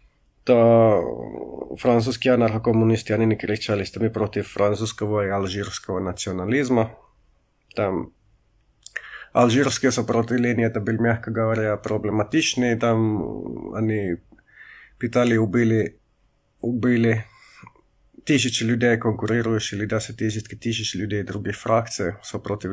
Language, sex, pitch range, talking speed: Finnish, male, 105-115 Hz, 75 wpm